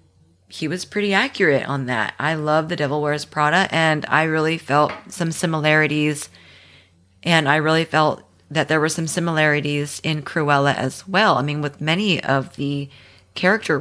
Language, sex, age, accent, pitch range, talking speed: English, female, 30-49, American, 125-160 Hz, 165 wpm